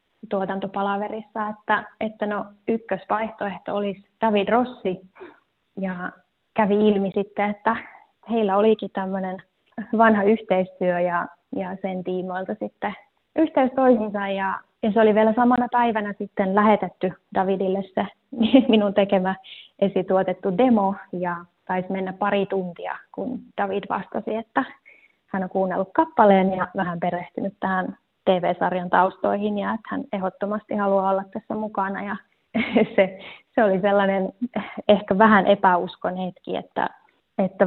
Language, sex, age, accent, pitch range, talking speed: Finnish, female, 20-39, native, 185-210 Hz, 125 wpm